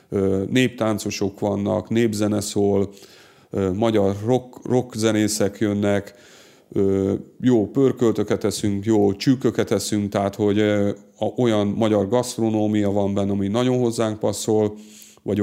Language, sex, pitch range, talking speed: Hungarian, male, 100-115 Hz, 100 wpm